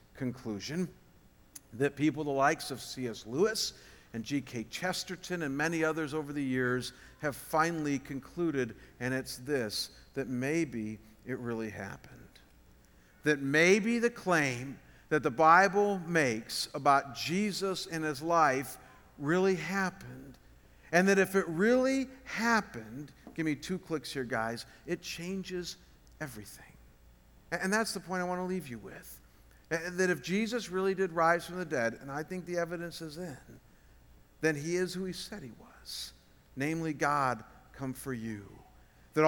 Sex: male